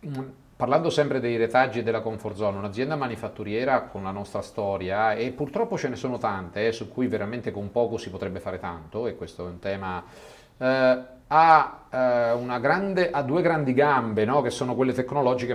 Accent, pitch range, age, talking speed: native, 105-135 Hz, 40-59, 190 wpm